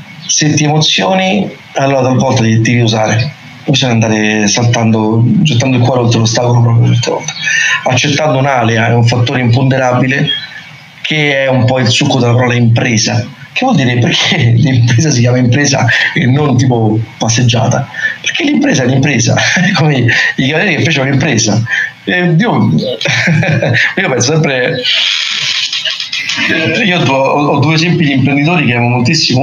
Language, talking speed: Italian, 140 wpm